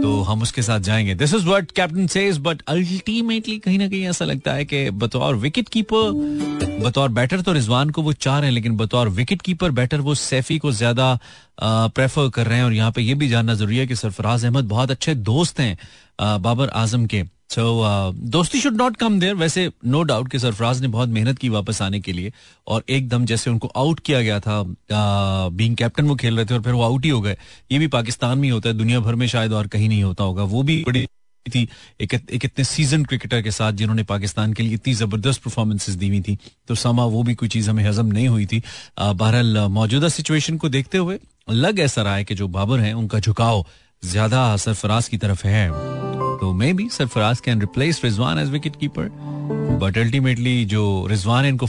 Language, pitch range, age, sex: Hindi, 105-135 Hz, 30-49, male